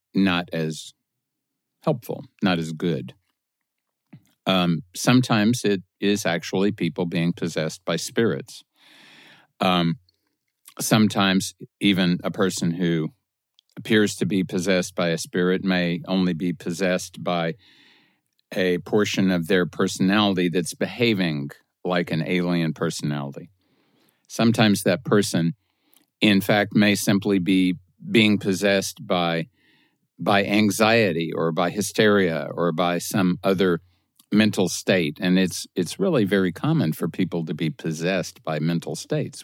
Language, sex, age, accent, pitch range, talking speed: English, male, 50-69, American, 85-100 Hz, 125 wpm